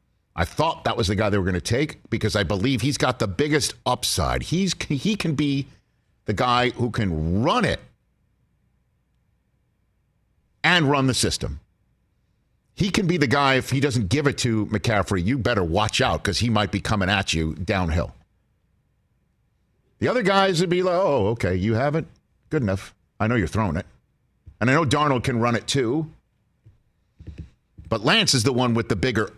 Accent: American